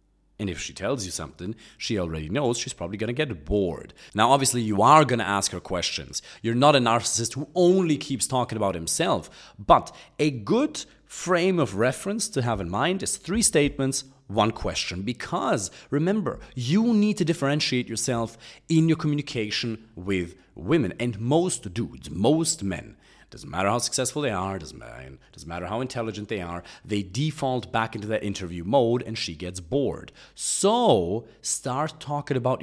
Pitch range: 100-145 Hz